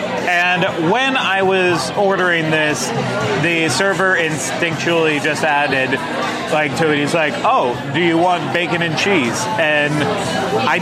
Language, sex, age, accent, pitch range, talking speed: English, male, 30-49, American, 145-175 Hz, 140 wpm